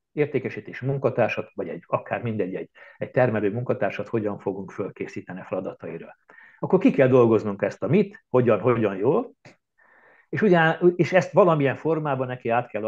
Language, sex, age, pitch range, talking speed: Hungarian, male, 60-79, 120-160 Hz, 145 wpm